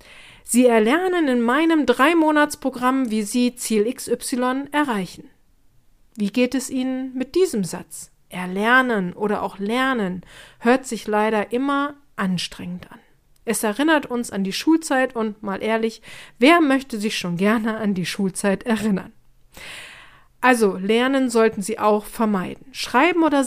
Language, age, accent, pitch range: German, 40-59, German, 215-265 Hz